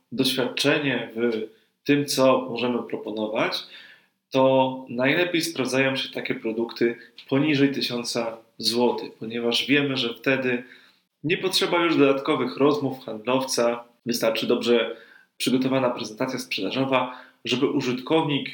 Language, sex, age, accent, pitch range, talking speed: Polish, male, 20-39, native, 120-140 Hz, 105 wpm